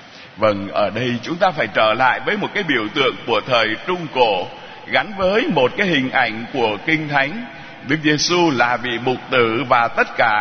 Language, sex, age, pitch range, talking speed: Vietnamese, male, 60-79, 115-155 Hz, 200 wpm